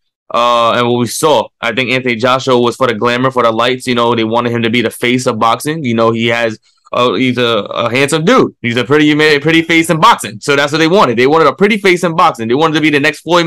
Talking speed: 280 wpm